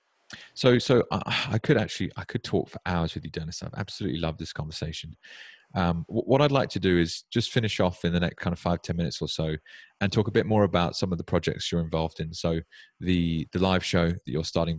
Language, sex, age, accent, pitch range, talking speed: English, male, 30-49, British, 85-110 Hz, 250 wpm